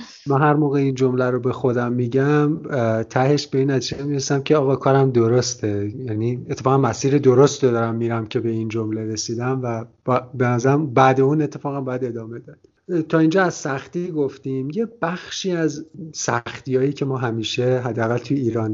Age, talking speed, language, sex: 50-69, 160 wpm, Persian, male